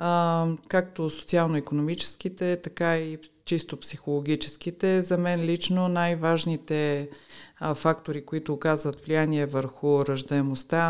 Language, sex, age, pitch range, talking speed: Bulgarian, female, 40-59, 145-165 Hz, 90 wpm